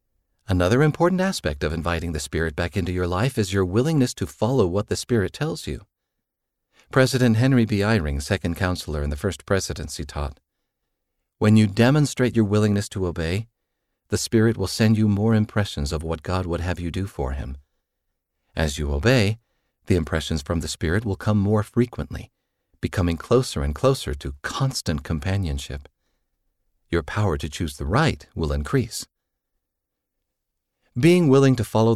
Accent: American